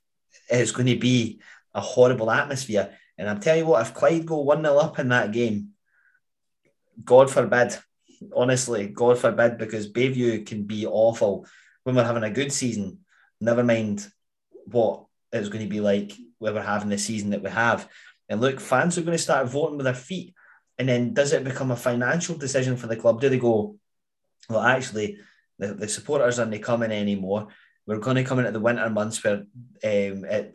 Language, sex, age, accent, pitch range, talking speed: English, male, 30-49, British, 110-130 Hz, 190 wpm